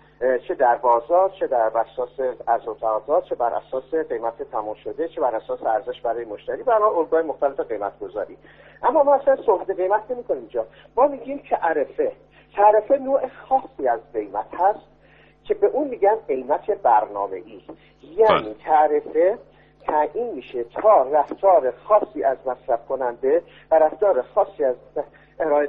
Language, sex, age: Persian, male, 50-69